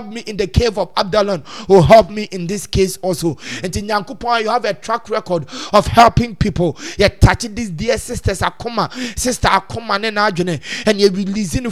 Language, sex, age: English, male, 30-49